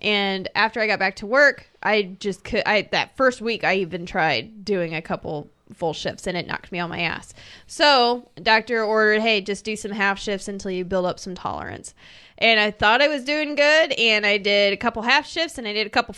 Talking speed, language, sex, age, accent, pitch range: 235 wpm, English, female, 20-39, American, 190-230 Hz